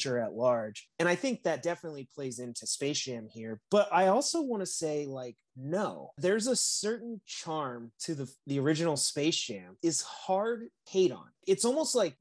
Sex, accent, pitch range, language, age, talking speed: male, American, 130-170 Hz, English, 30-49, 180 wpm